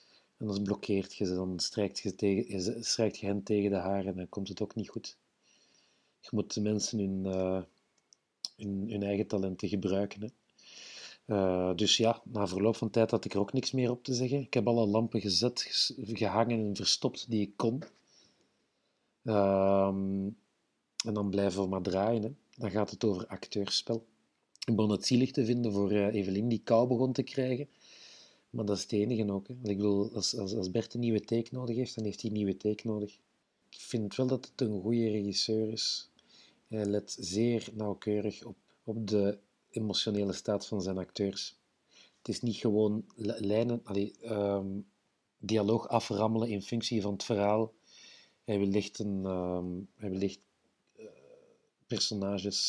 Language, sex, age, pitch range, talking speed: Dutch, male, 40-59, 100-115 Hz, 175 wpm